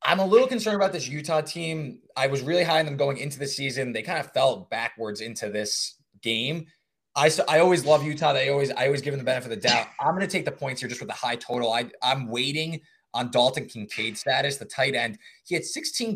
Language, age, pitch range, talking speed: English, 20-39, 125-160 Hz, 255 wpm